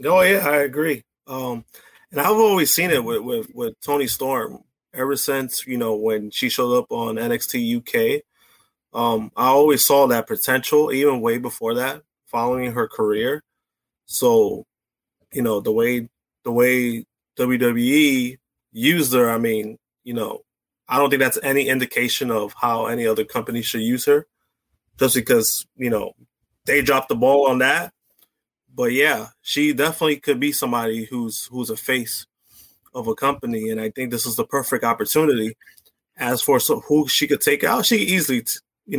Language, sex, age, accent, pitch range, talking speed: English, male, 20-39, American, 120-150 Hz, 170 wpm